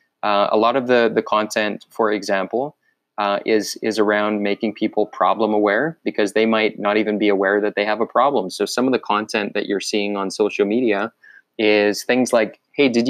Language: English